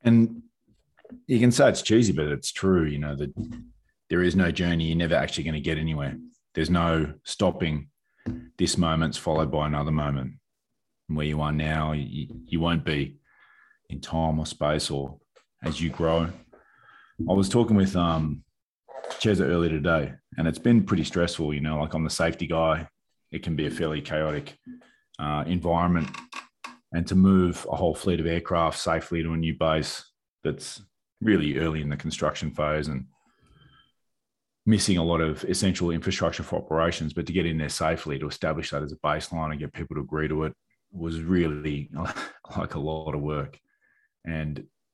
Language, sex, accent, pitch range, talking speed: English, male, Australian, 75-90 Hz, 175 wpm